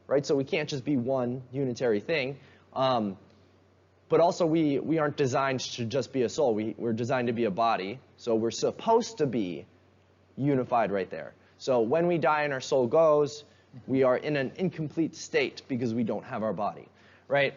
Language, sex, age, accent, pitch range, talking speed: English, male, 20-39, American, 115-160 Hz, 195 wpm